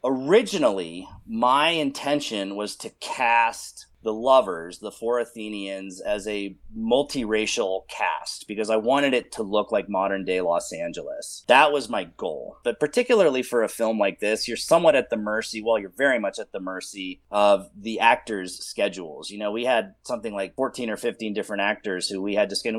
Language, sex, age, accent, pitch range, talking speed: English, male, 30-49, American, 100-130 Hz, 185 wpm